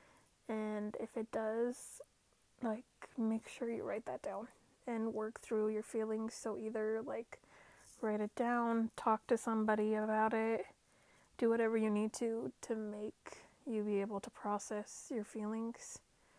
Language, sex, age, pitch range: English, female, 30-49, 210-225 Hz